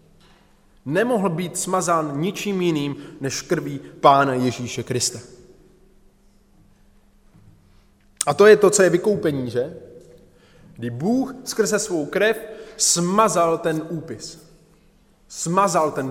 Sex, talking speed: male, 105 wpm